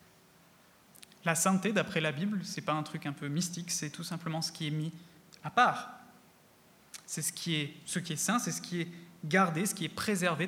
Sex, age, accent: male, 20-39, French